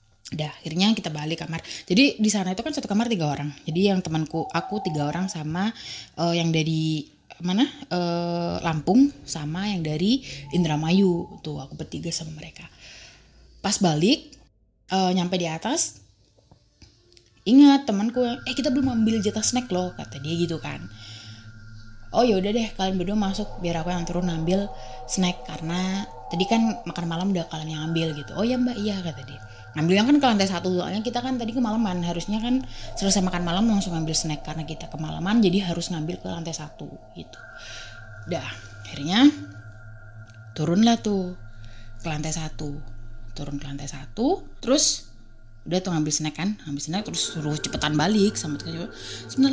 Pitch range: 150-210 Hz